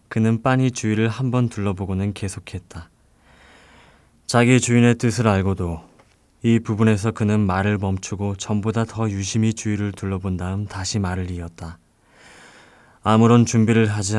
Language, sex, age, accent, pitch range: Korean, male, 20-39, native, 95-110 Hz